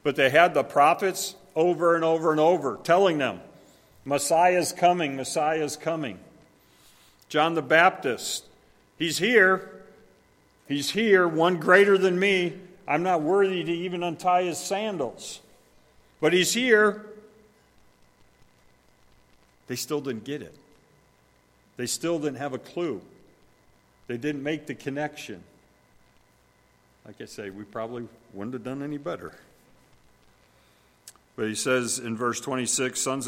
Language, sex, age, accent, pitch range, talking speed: English, male, 50-69, American, 115-150 Hz, 130 wpm